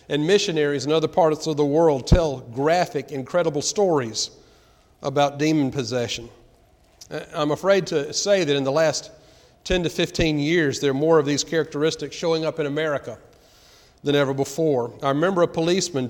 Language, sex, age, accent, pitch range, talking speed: English, male, 40-59, American, 140-165 Hz, 165 wpm